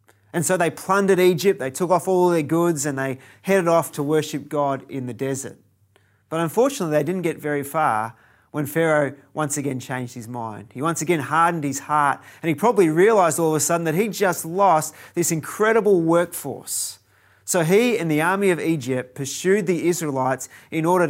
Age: 30-49